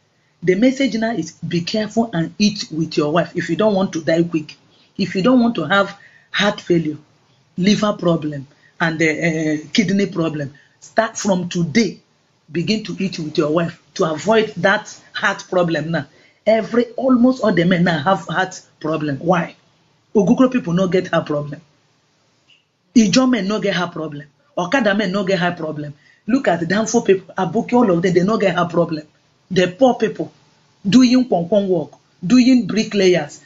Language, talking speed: English, 180 wpm